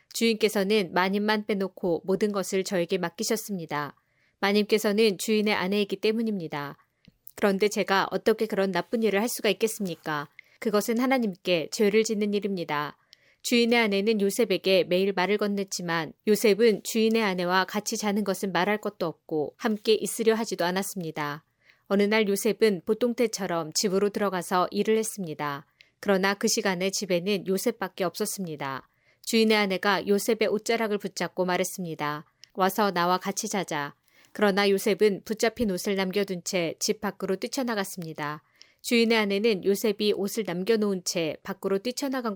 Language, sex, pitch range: Korean, female, 180-215 Hz